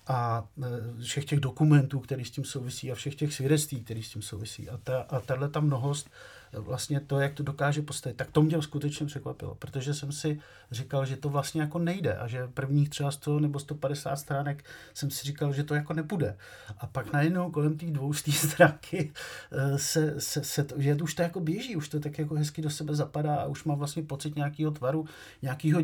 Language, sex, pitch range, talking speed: Czech, male, 130-150 Hz, 210 wpm